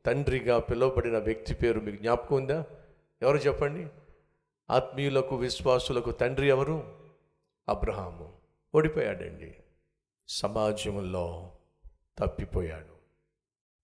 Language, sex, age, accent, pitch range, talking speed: Telugu, male, 50-69, native, 90-135 Hz, 75 wpm